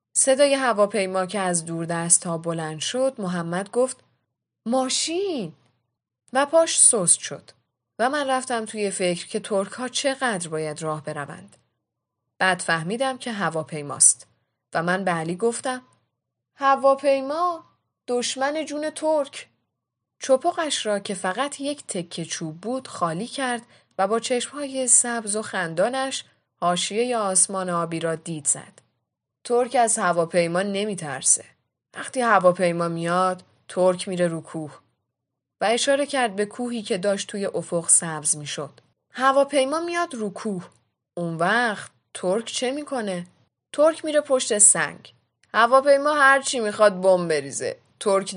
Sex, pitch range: female, 170-255 Hz